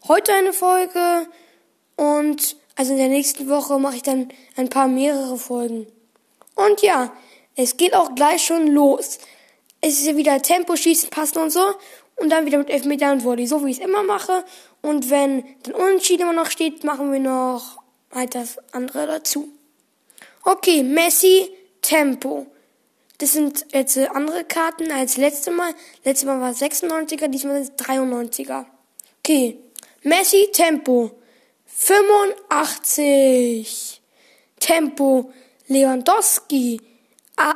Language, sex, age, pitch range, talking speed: German, female, 10-29, 265-330 Hz, 135 wpm